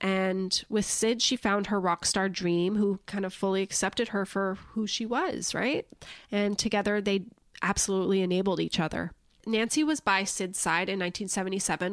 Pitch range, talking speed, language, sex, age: 185-230 Hz, 170 wpm, English, female, 20-39